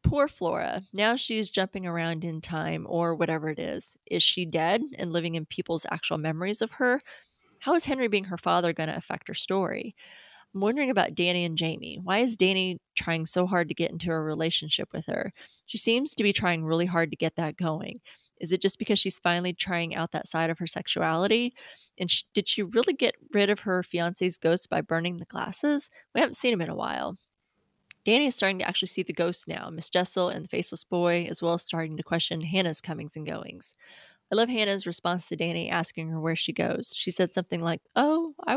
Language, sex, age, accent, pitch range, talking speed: English, female, 20-39, American, 165-210 Hz, 220 wpm